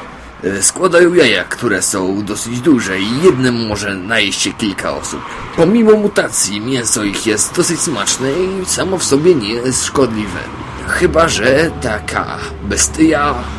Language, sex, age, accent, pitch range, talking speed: Polish, male, 30-49, native, 90-120 Hz, 135 wpm